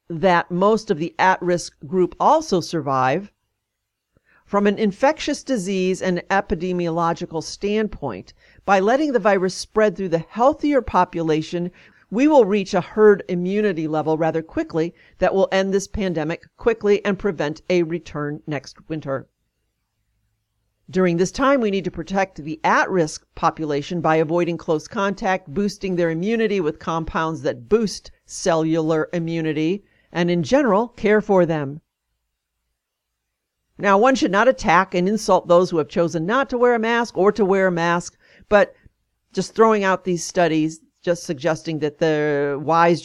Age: 50-69